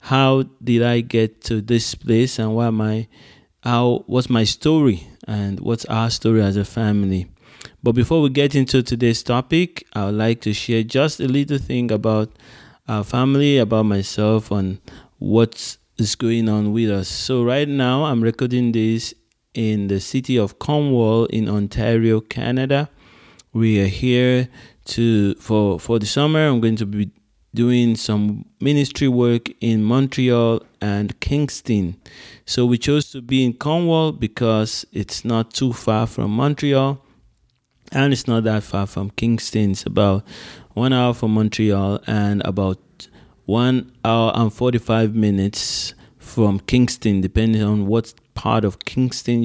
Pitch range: 105-125 Hz